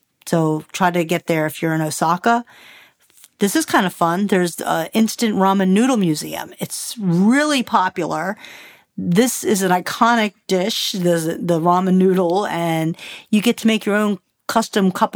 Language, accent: English, American